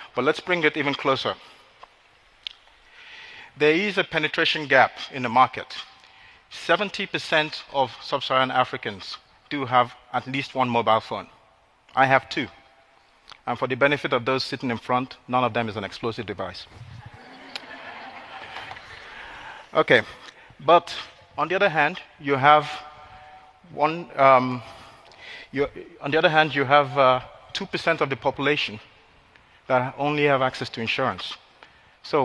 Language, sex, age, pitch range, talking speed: English, male, 40-59, 125-150 Hz, 140 wpm